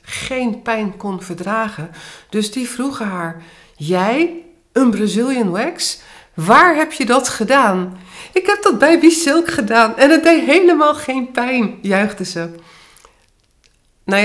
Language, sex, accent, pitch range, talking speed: Dutch, female, Dutch, 175-230 Hz, 135 wpm